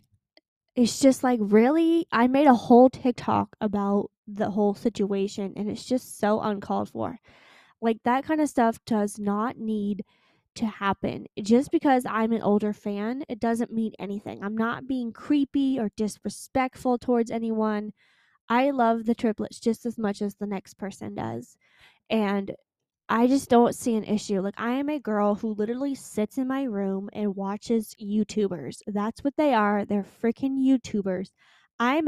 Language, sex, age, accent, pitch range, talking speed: English, female, 10-29, American, 205-250 Hz, 165 wpm